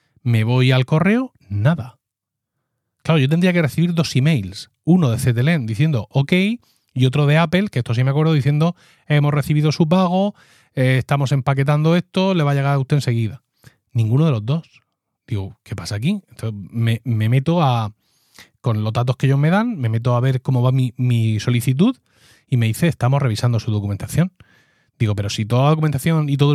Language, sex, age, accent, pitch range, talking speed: Spanish, male, 30-49, Spanish, 120-155 Hz, 195 wpm